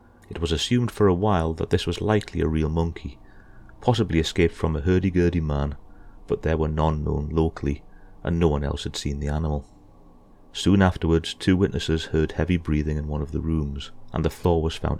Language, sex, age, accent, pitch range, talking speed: English, male, 30-49, British, 75-95 Hz, 200 wpm